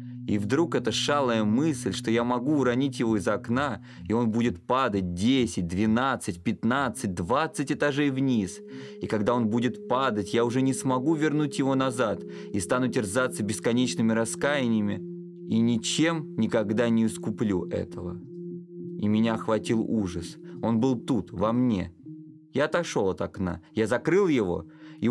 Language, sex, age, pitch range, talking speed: Russian, male, 20-39, 110-155 Hz, 150 wpm